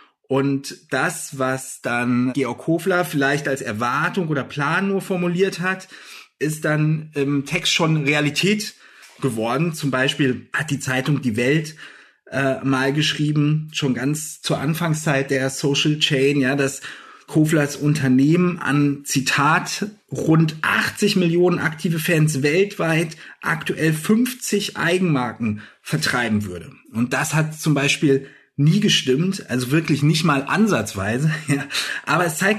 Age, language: 30-49, German